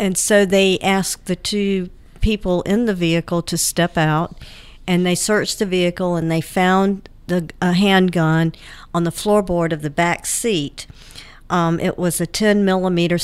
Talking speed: 165 wpm